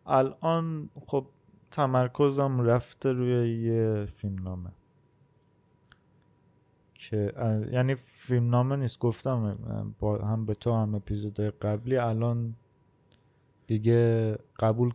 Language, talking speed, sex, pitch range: Persian, 90 wpm, male, 105-130 Hz